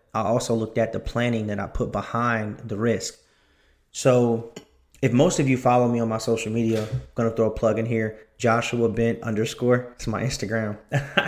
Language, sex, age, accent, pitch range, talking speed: English, male, 20-39, American, 110-130 Hz, 185 wpm